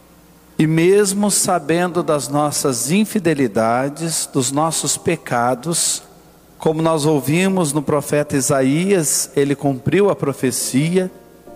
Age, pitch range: 50-69, 125-160 Hz